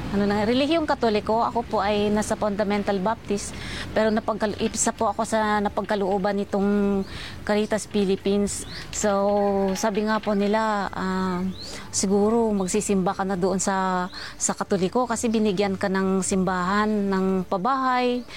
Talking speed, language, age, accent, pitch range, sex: 130 wpm, Filipino, 20-39, native, 205-245 Hz, female